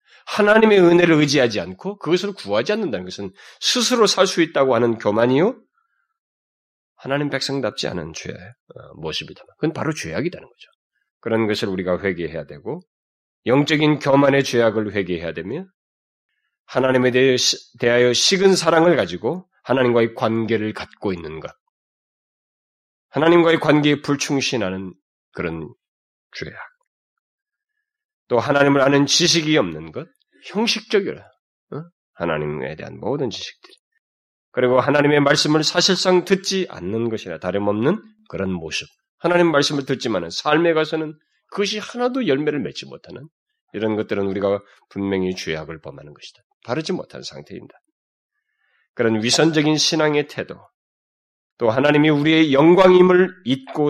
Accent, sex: native, male